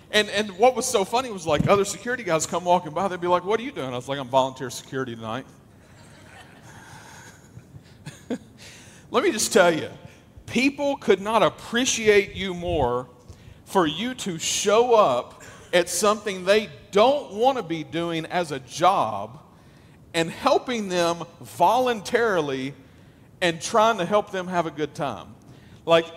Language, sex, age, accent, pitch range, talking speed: English, male, 40-59, American, 130-210 Hz, 160 wpm